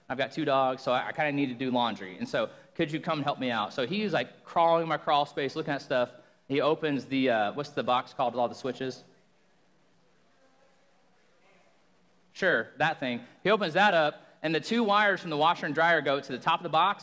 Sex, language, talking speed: male, English, 235 wpm